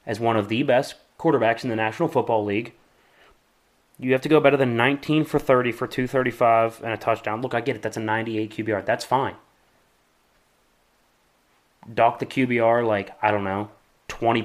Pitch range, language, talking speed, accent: 110-140 Hz, English, 180 wpm, American